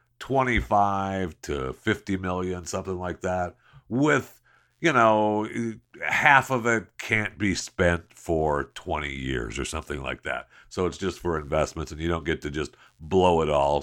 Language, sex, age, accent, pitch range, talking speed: English, male, 50-69, American, 85-120 Hz, 160 wpm